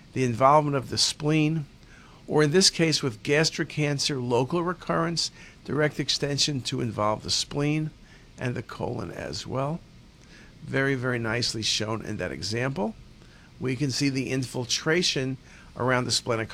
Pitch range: 125-160 Hz